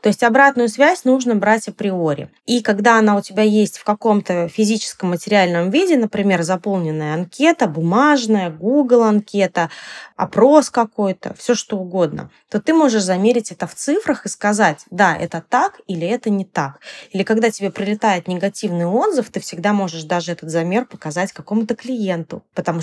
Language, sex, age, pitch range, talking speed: Russian, female, 20-39, 180-235 Hz, 160 wpm